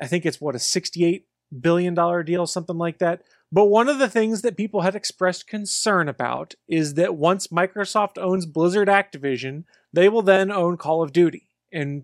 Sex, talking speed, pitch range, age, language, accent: male, 185 wpm, 150-185 Hz, 30-49, English, American